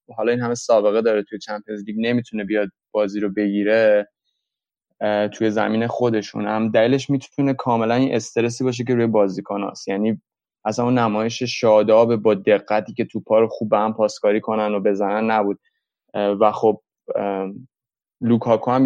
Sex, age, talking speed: male, 20-39, 155 wpm